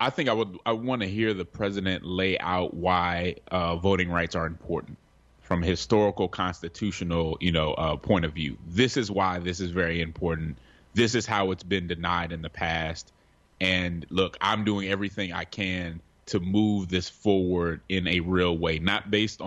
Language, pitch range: English, 85-100 Hz